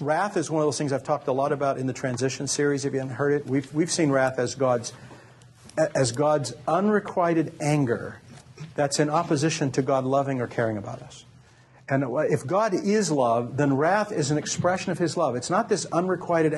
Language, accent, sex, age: English, American, male, 50-69